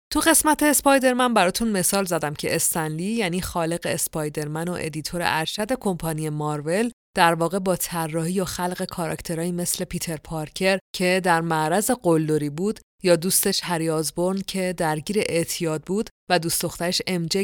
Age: 30-49